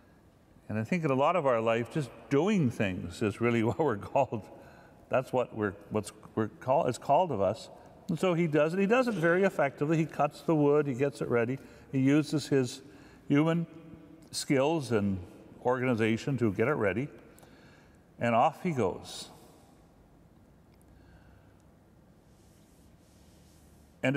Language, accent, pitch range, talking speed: English, American, 115-165 Hz, 150 wpm